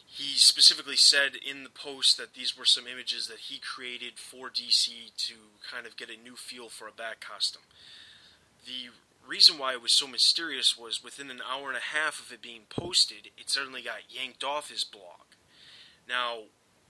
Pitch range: 115-140 Hz